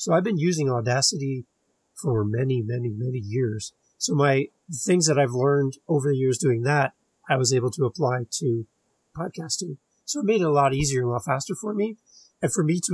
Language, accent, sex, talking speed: English, American, male, 210 wpm